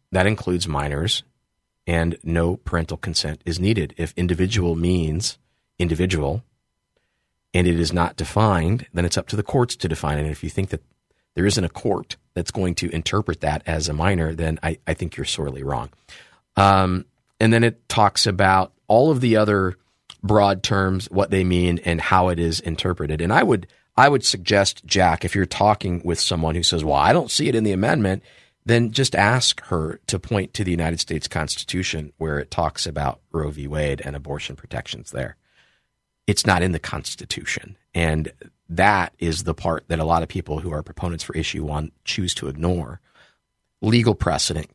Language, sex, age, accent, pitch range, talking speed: English, male, 40-59, American, 80-95 Hz, 190 wpm